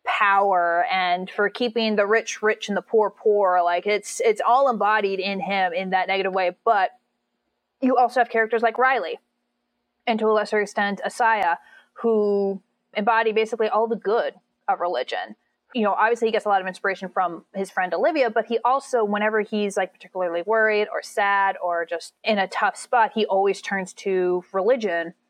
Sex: female